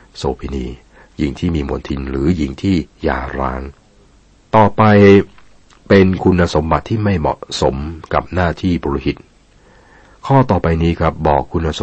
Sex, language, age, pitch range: male, Thai, 60-79, 70-85 Hz